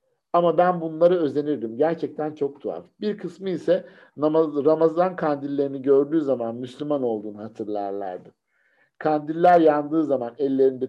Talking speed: 115 wpm